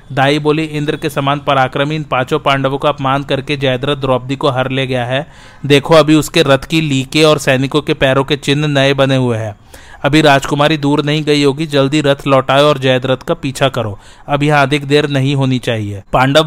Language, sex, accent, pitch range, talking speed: Hindi, male, native, 135-150 Hz, 185 wpm